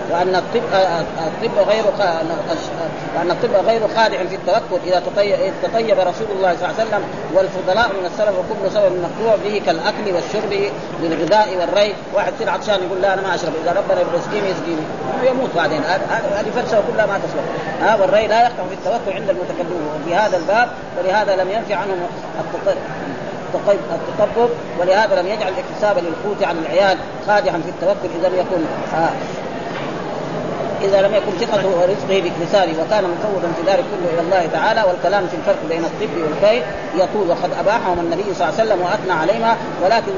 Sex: female